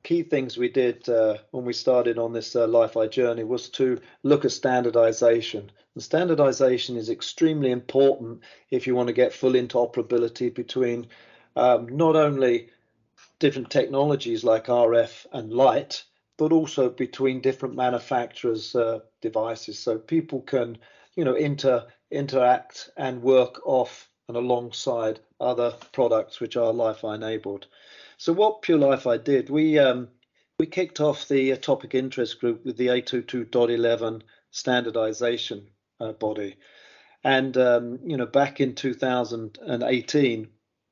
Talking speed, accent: 130 wpm, British